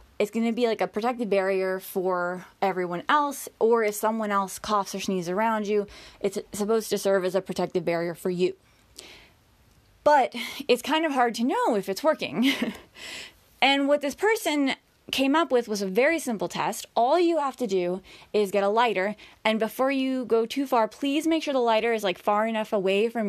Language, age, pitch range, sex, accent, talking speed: English, 20-39, 190-245 Hz, female, American, 200 wpm